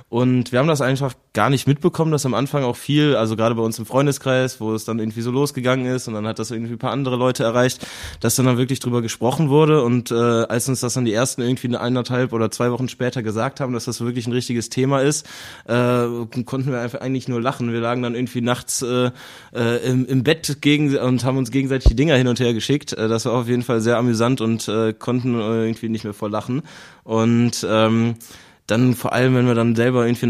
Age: 20-39